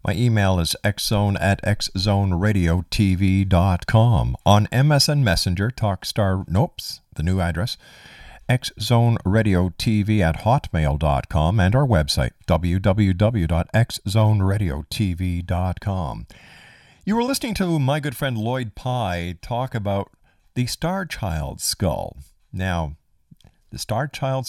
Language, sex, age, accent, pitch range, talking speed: English, male, 50-69, American, 90-120 Hz, 100 wpm